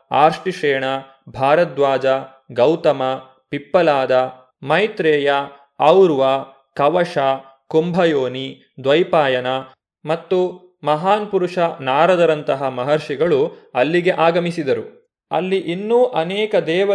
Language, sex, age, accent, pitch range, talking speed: Kannada, male, 20-39, native, 145-190 Hz, 70 wpm